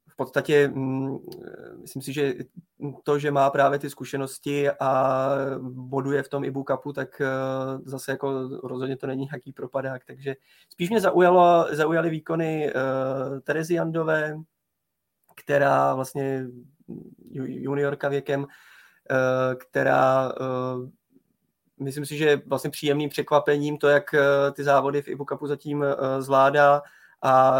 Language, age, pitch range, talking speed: Czech, 20-39, 135-145 Hz, 115 wpm